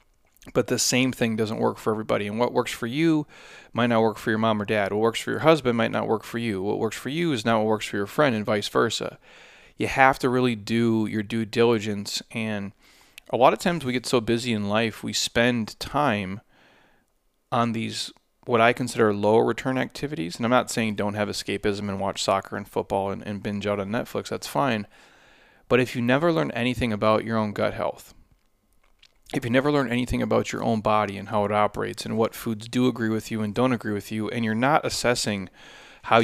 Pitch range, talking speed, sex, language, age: 105-120 Hz, 225 wpm, male, English, 30-49